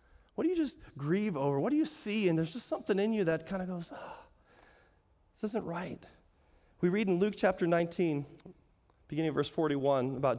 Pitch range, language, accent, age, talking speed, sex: 140-195 Hz, English, American, 30-49, 200 wpm, male